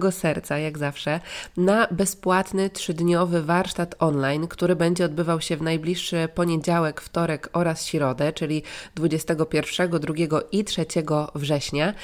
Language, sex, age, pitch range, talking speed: Polish, female, 20-39, 155-180 Hz, 120 wpm